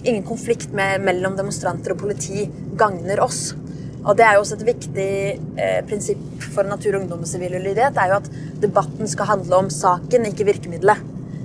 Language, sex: Danish, female